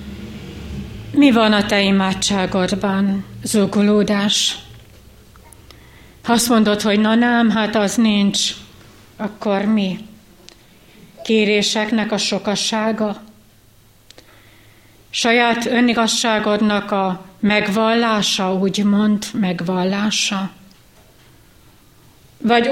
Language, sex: Hungarian, female